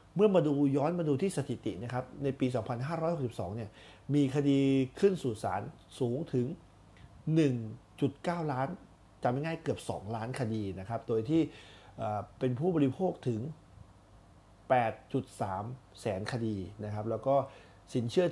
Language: Thai